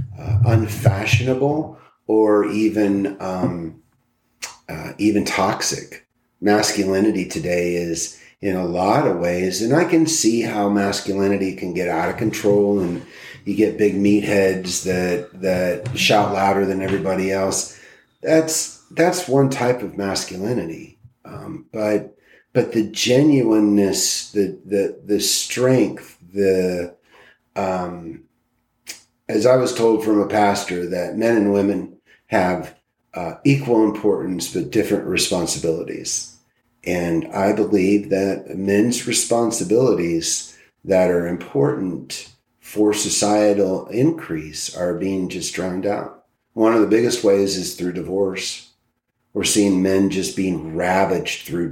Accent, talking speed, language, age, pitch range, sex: American, 125 wpm, English, 40-59, 95-110 Hz, male